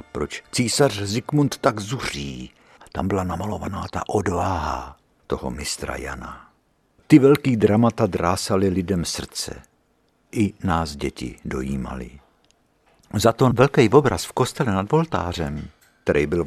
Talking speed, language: 120 wpm, Czech